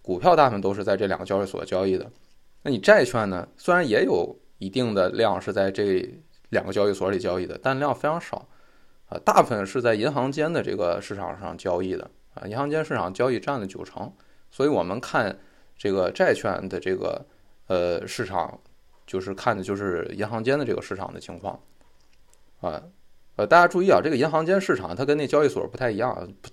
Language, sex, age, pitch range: Chinese, male, 20-39, 95-140 Hz